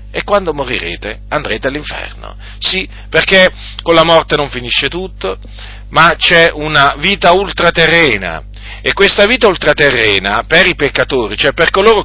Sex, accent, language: male, native, Italian